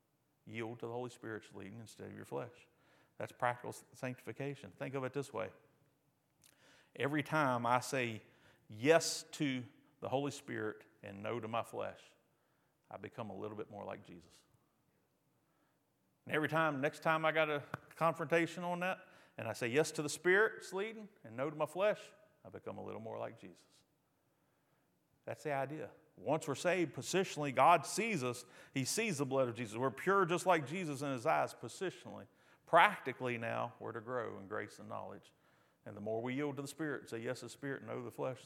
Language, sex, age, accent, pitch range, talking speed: English, male, 50-69, American, 115-155 Hz, 190 wpm